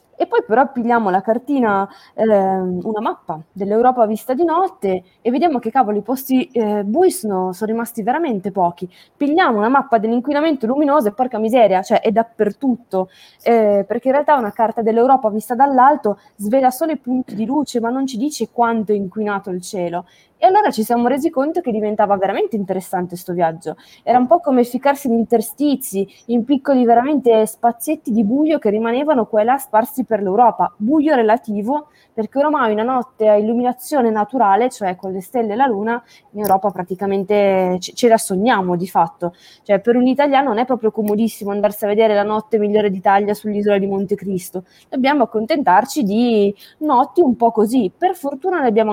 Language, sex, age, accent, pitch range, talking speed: Italian, female, 20-39, native, 205-255 Hz, 180 wpm